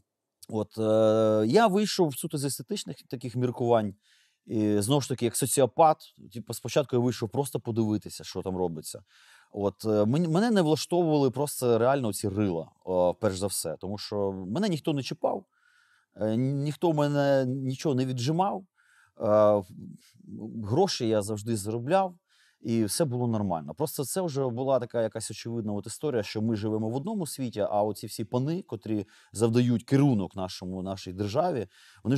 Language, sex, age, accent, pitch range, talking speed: Ukrainian, male, 30-49, native, 105-140 Hz, 160 wpm